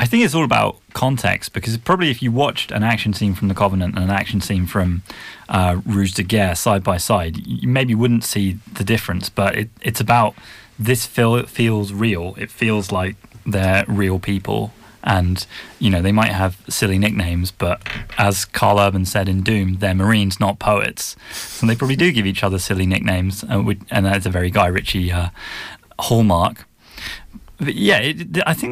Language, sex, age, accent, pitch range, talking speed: English, male, 20-39, British, 95-115 Hz, 180 wpm